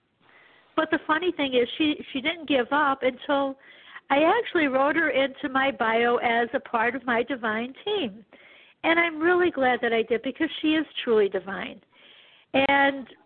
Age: 60-79